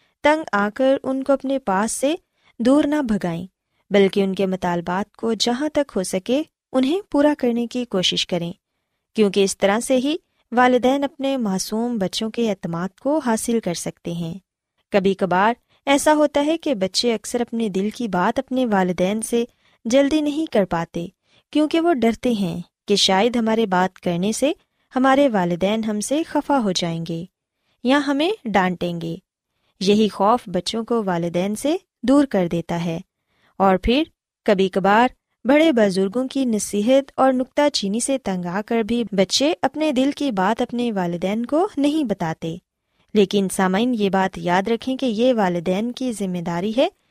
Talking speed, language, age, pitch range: 170 wpm, Urdu, 20-39, 190-265 Hz